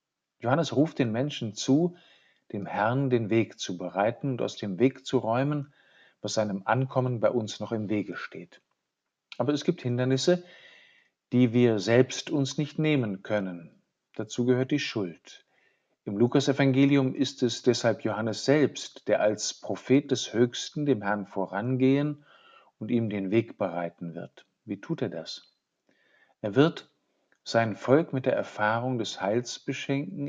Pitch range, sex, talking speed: 105-135 Hz, male, 150 wpm